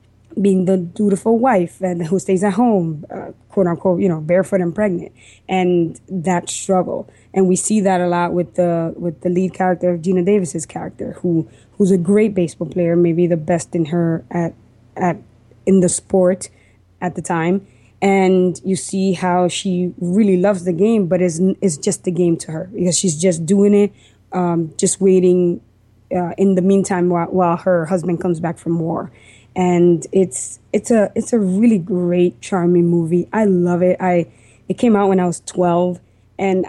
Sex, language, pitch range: female, English, 170-190 Hz